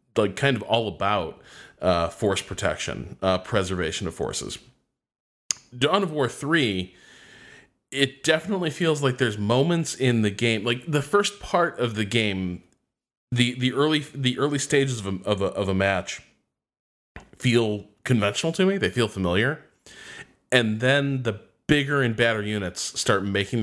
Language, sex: English, male